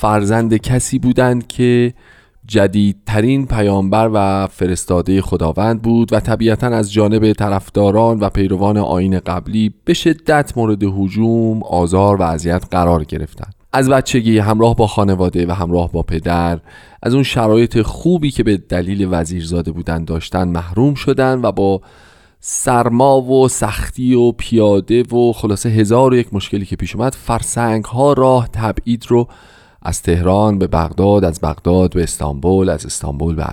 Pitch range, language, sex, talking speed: 90-115 Hz, Persian, male, 140 wpm